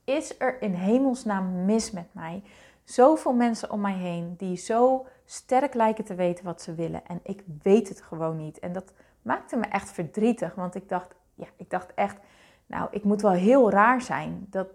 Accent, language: Dutch, Dutch